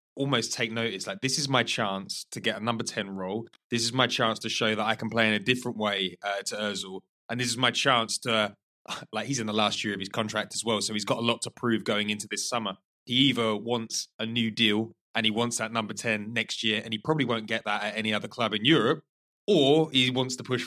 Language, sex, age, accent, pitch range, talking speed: English, male, 20-39, British, 105-125 Hz, 265 wpm